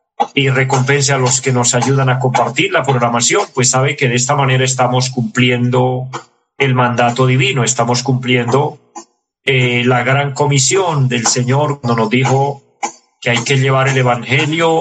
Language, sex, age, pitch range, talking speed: Spanish, male, 40-59, 120-140 Hz, 160 wpm